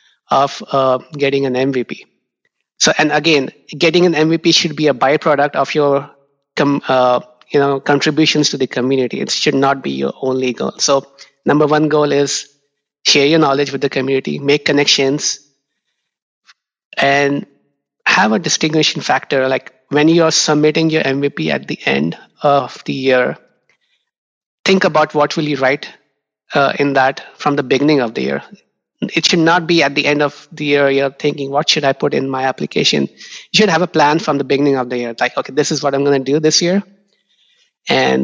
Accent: Indian